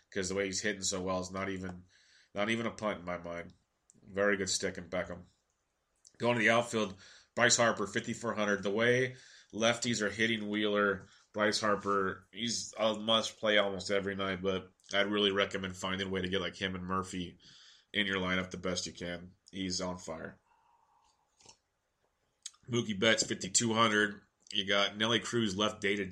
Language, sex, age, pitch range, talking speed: English, male, 30-49, 95-105 Hz, 185 wpm